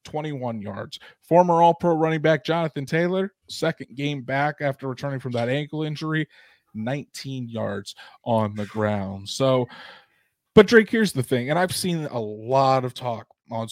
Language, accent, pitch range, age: English, American, 120-145 Hz, 20-39